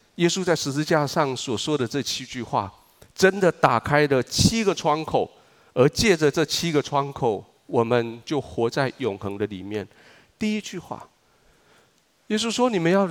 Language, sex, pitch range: Chinese, male, 120-165 Hz